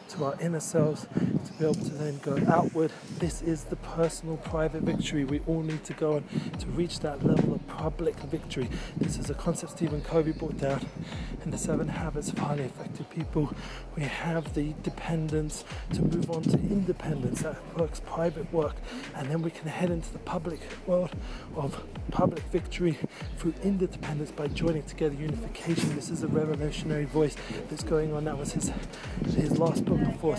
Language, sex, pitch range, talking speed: English, male, 145-170 Hz, 180 wpm